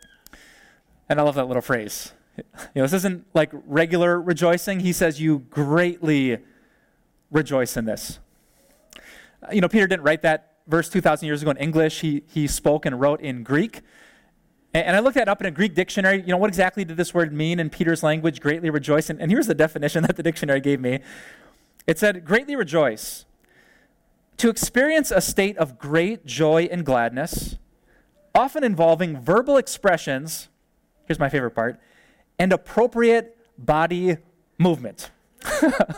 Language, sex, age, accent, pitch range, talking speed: English, male, 30-49, American, 145-185 Hz, 165 wpm